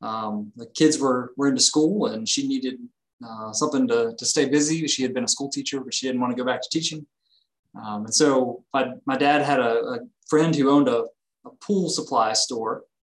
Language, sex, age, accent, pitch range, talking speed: English, male, 20-39, American, 135-185 Hz, 220 wpm